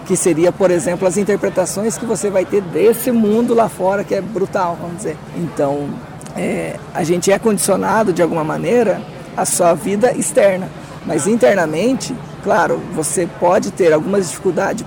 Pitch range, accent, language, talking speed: 175-210 Hz, Brazilian, Portuguese, 155 wpm